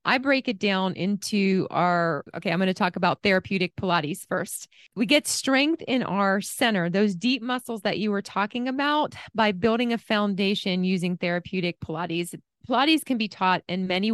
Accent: American